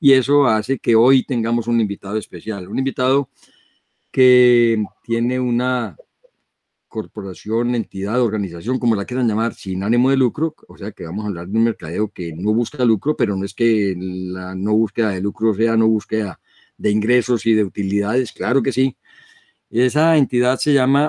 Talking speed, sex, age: 175 wpm, male, 50-69